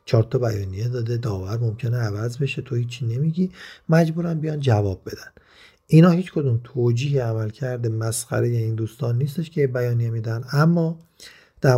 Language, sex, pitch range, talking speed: Persian, male, 110-135 Hz, 155 wpm